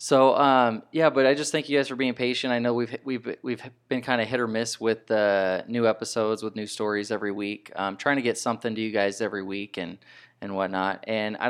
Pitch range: 100-120 Hz